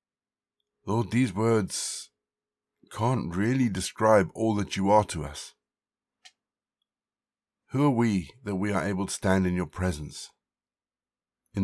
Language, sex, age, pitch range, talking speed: English, male, 50-69, 85-105 Hz, 130 wpm